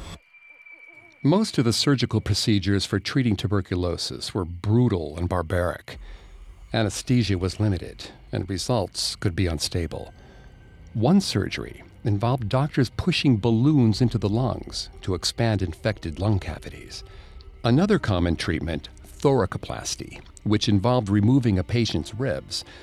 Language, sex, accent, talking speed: English, male, American, 115 wpm